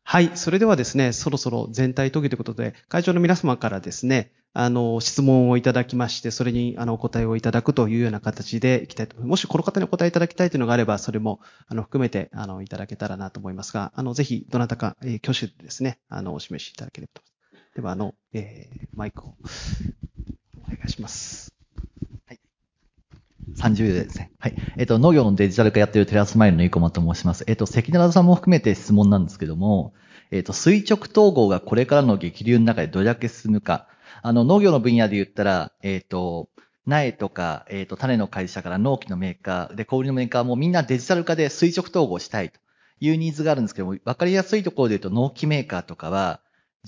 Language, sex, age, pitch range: Japanese, male, 30-49, 105-145 Hz